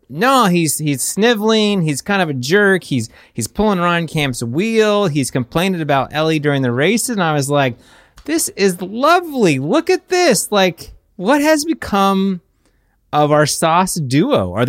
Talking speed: 170 wpm